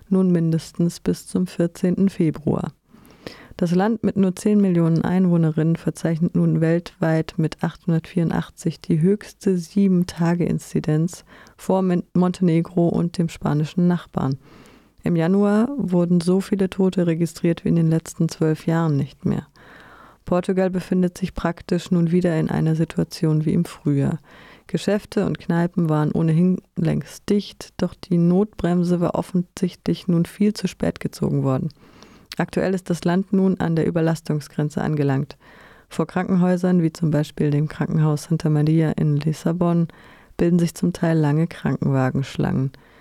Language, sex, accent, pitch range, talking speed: German, female, German, 160-185 Hz, 135 wpm